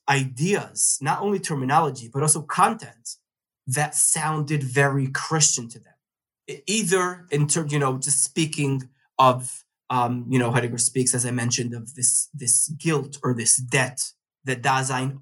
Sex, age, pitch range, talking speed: male, 20-39, 125-150 Hz, 150 wpm